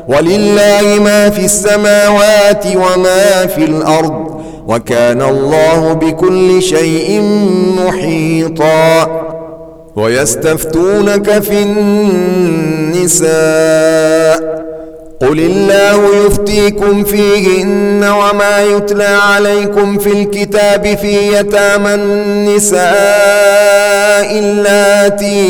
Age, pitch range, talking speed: 40-59, 160-205 Hz, 65 wpm